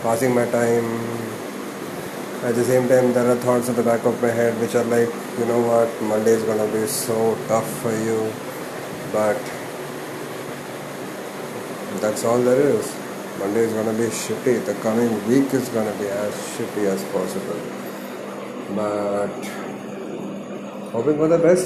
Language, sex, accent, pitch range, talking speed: English, male, Indian, 110-125 Hz, 150 wpm